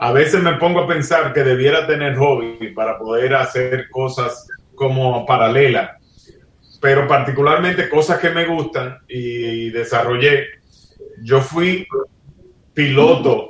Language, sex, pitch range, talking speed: Spanish, male, 125-155 Hz, 120 wpm